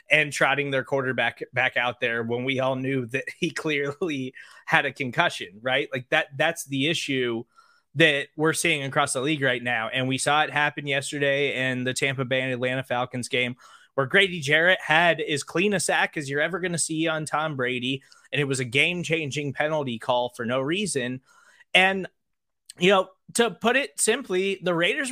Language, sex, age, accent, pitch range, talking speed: English, male, 20-39, American, 135-180 Hz, 195 wpm